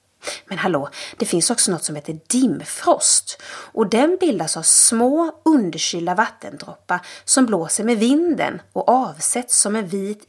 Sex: female